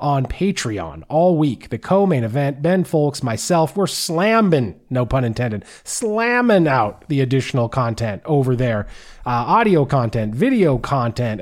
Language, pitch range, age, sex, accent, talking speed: English, 135-175 Hz, 30-49, male, American, 140 wpm